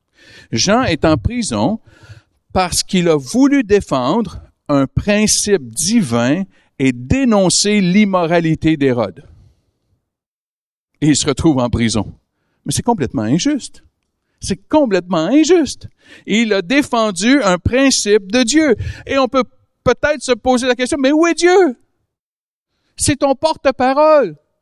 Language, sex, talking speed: French, male, 125 wpm